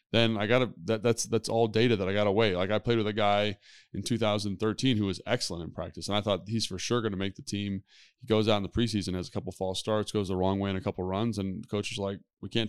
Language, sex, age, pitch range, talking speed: English, male, 20-39, 95-115 Hz, 285 wpm